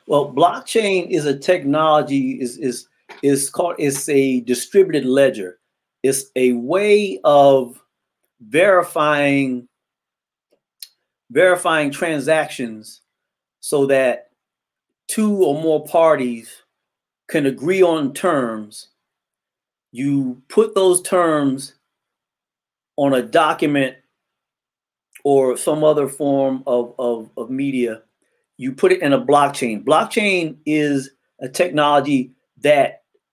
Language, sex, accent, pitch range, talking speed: English, male, American, 130-175 Hz, 100 wpm